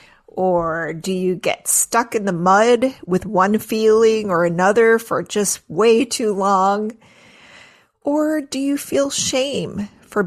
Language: English